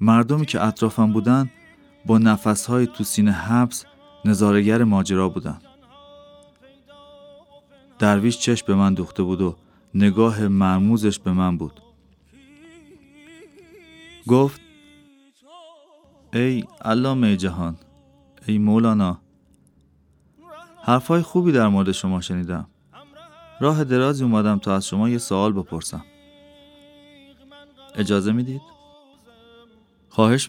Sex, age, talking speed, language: male, 30-49, 95 wpm, Persian